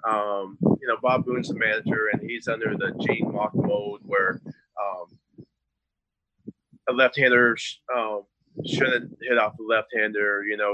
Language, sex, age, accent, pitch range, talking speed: English, male, 30-49, American, 105-130 Hz, 170 wpm